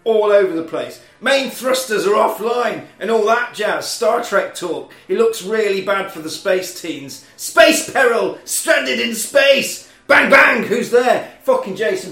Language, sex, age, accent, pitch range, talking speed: English, male, 30-49, British, 160-220 Hz, 170 wpm